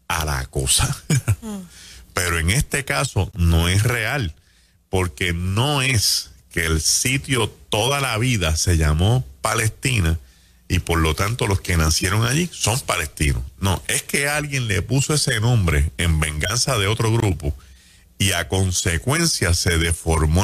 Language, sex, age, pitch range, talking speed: Spanish, male, 40-59, 80-110 Hz, 145 wpm